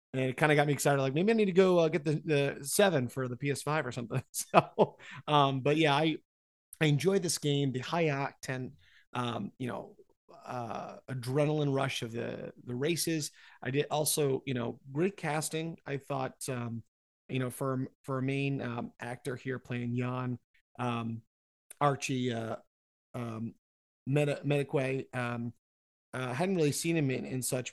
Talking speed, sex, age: 175 wpm, male, 30-49